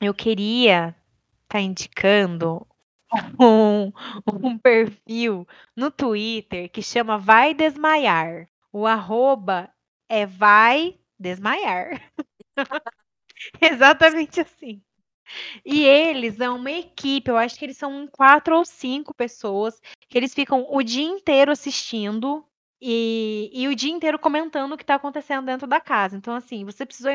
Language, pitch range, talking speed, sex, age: Portuguese, 225-275 Hz, 130 wpm, female, 20-39